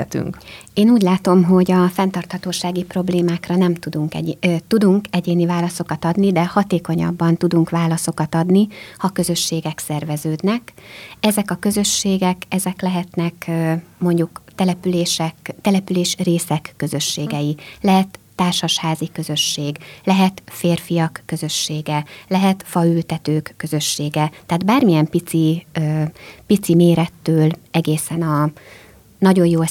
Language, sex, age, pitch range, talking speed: Hungarian, female, 30-49, 160-185 Hz, 105 wpm